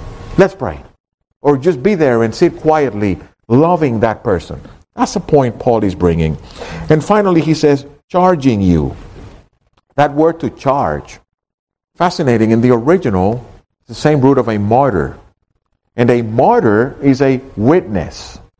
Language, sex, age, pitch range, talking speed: English, male, 50-69, 100-145 Hz, 145 wpm